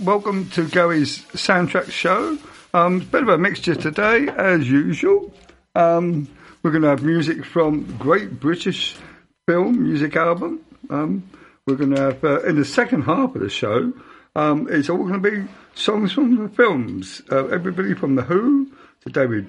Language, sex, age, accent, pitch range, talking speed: English, male, 50-69, British, 145-200 Hz, 170 wpm